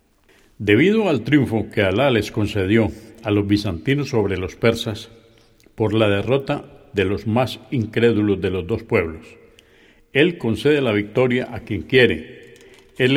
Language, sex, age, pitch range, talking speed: Spanish, male, 60-79, 105-135 Hz, 145 wpm